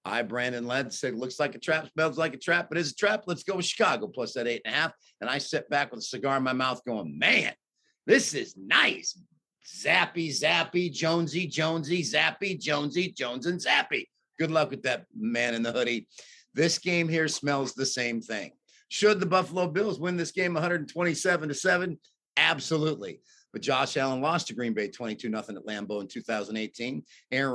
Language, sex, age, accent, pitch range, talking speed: English, male, 50-69, American, 120-160 Hz, 195 wpm